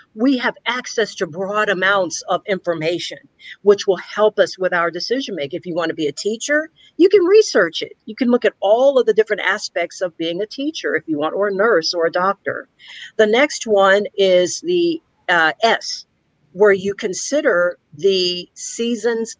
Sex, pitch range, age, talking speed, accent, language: female, 175-240 Hz, 50-69, 180 wpm, American, English